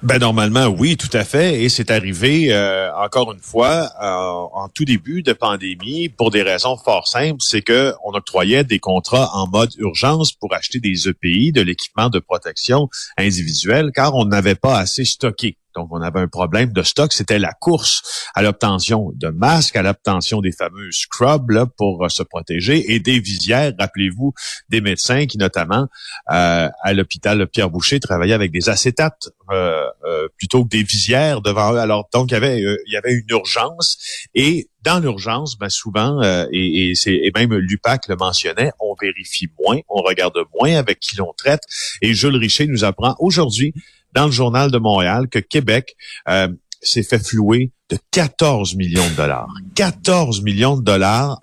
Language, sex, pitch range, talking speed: French, male, 100-135 Hz, 175 wpm